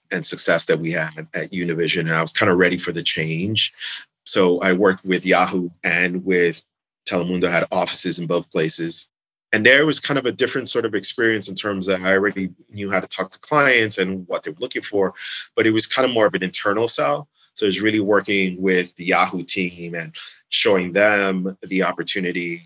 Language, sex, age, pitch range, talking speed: English, male, 30-49, 90-100 Hz, 215 wpm